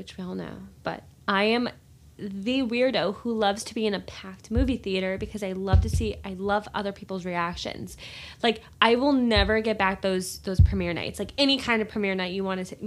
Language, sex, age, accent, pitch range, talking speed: English, female, 20-39, American, 190-235 Hz, 220 wpm